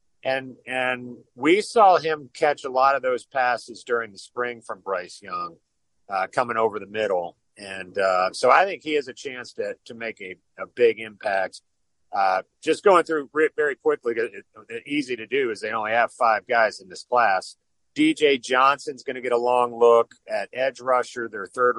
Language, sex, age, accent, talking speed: English, male, 40-59, American, 200 wpm